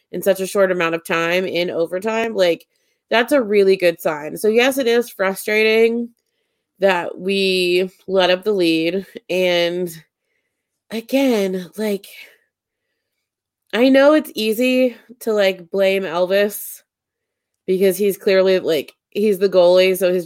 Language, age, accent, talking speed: English, 20-39, American, 135 wpm